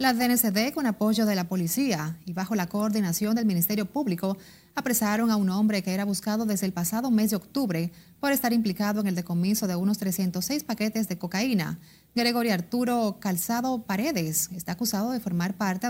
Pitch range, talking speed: 180-225 Hz, 180 wpm